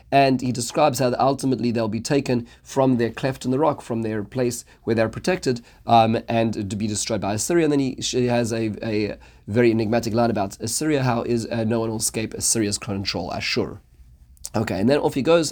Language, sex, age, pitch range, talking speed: English, male, 30-49, 110-130 Hz, 210 wpm